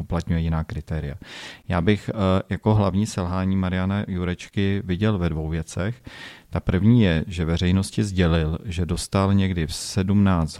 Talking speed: 140 wpm